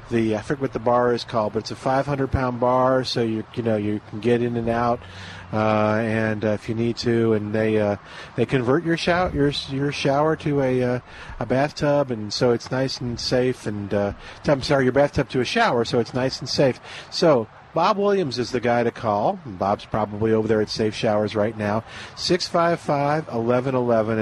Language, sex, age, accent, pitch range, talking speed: English, male, 40-59, American, 110-135 Hz, 205 wpm